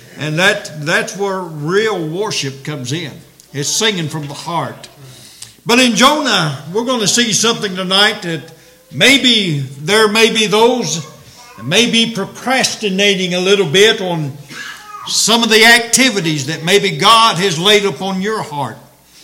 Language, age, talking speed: English, 60-79, 150 wpm